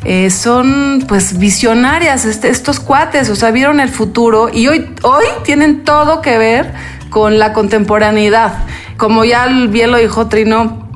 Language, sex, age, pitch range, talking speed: Spanish, female, 30-49, 205-245 Hz, 150 wpm